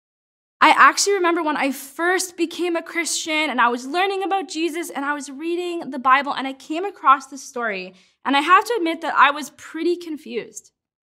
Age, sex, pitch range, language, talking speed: 20-39, female, 245-330 Hz, English, 200 wpm